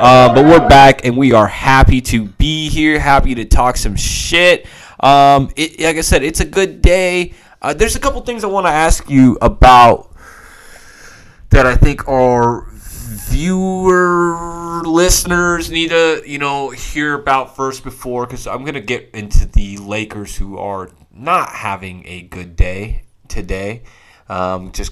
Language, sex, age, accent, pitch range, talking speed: English, male, 20-39, American, 100-150 Hz, 165 wpm